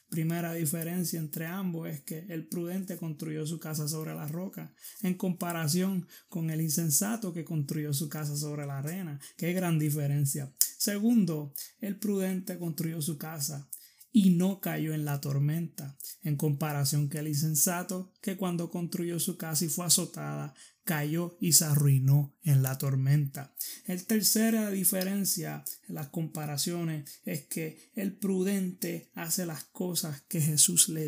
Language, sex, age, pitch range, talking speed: Spanish, male, 20-39, 150-175 Hz, 150 wpm